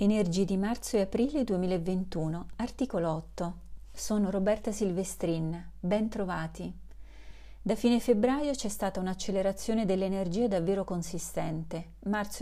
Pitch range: 180-225 Hz